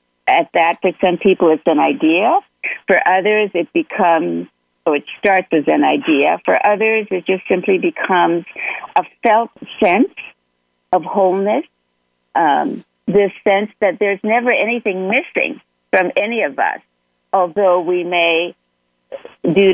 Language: English